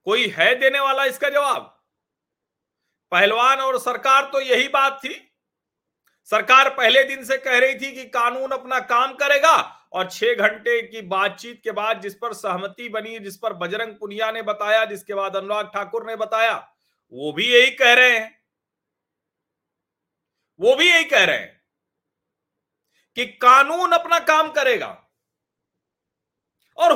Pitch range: 220-290 Hz